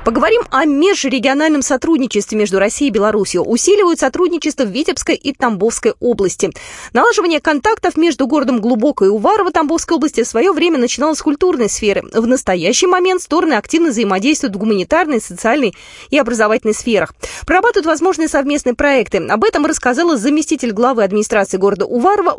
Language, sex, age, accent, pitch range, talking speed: Russian, female, 20-39, native, 200-290 Hz, 145 wpm